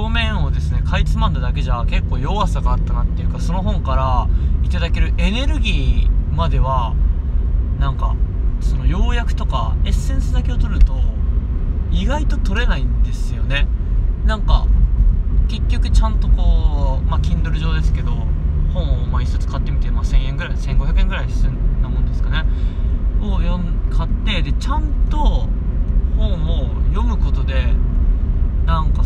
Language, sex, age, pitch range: Japanese, male, 20-39, 70-85 Hz